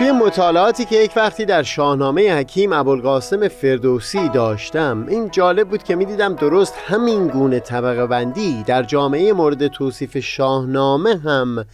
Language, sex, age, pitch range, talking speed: Persian, male, 30-49, 125-175 Hz, 135 wpm